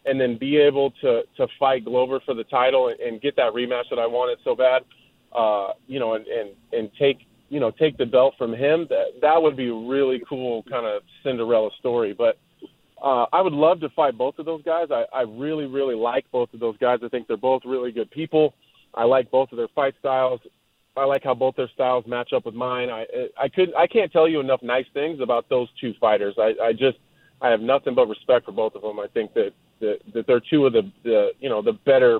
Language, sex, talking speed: English, male, 240 wpm